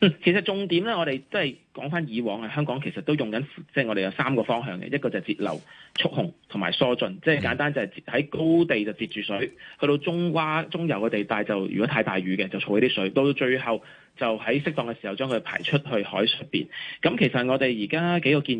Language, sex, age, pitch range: Chinese, male, 20-39, 110-150 Hz